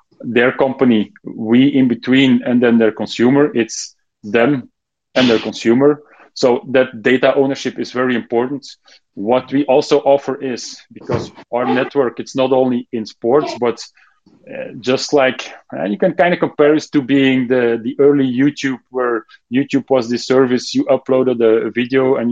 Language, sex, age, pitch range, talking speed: English, male, 30-49, 120-140 Hz, 165 wpm